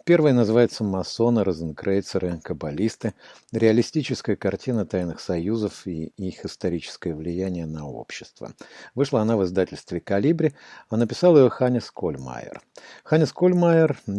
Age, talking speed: 50-69, 120 wpm